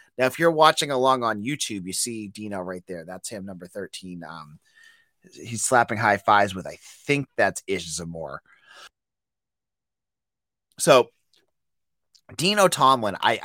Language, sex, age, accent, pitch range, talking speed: English, male, 30-49, American, 100-135 Hz, 140 wpm